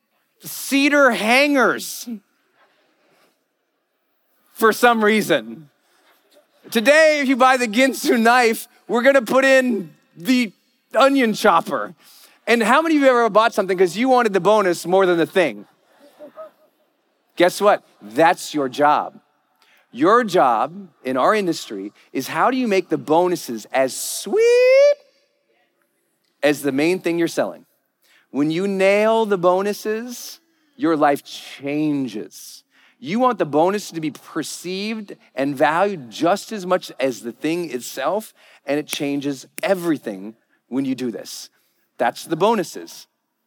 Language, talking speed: English, 135 wpm